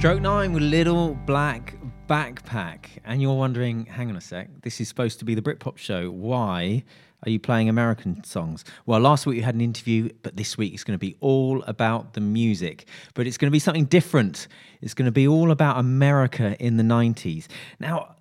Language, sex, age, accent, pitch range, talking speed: English, male, 30-49, British, 110-155 Hz, 210 wpm